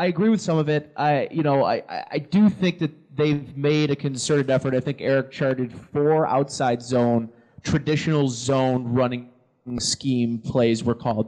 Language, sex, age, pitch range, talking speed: English, male, 20-39, 120-145 Hz, 175 wpm